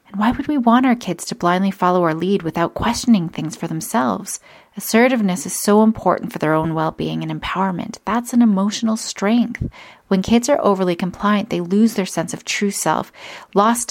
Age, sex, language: 30-49, female, English